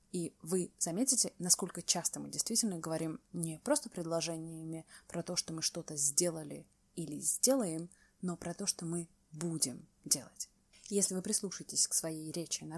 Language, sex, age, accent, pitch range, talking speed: Russian, female, 20-39, native, 160-210 Hz, 155 wpm